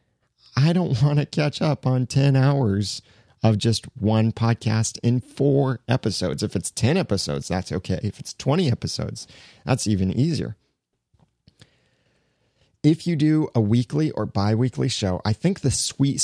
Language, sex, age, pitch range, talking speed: English, male, 30-49, 100-130 Hz, 150 wpm